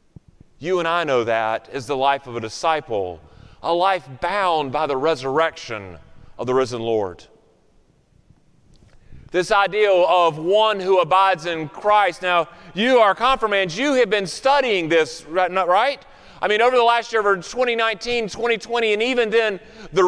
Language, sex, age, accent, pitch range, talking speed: English, male, 30-49, American, 175-235 Hz, 155 wpm